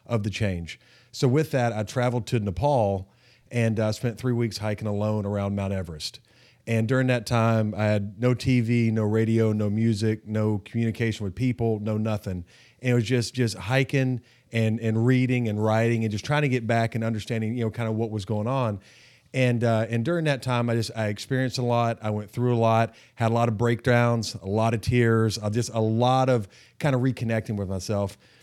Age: 40-59